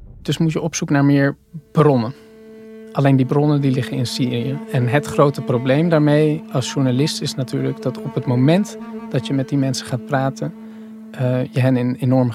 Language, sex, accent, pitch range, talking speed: Dutch, male, Dutch, 130-150 Hz, 195 wpm